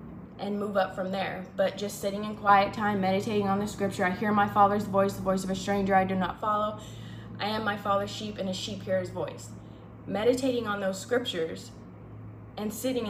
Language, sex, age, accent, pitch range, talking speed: English, female, 20-39, American, 190-225 Hz, 210 wpm